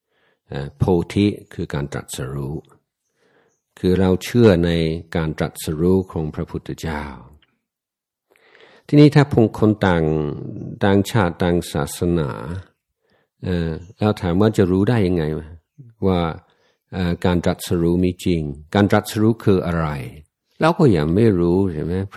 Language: Thai